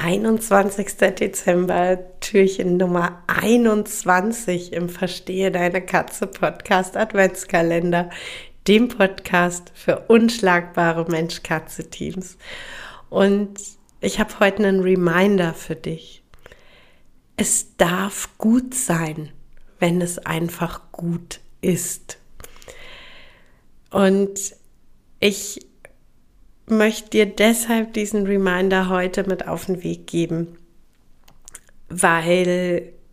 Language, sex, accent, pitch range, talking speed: German, female, German, 175-210 Hz, 80 wpm